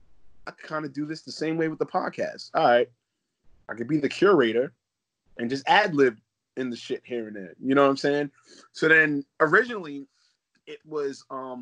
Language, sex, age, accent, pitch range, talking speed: English, male, 20-39, American, 120-145 Hz, 200 wpm